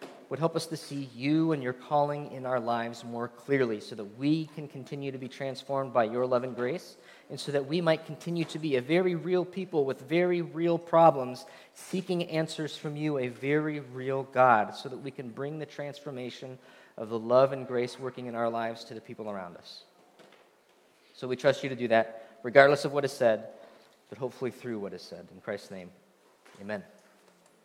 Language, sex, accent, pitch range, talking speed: English, male, American, 135-175 Hz, 205 wpm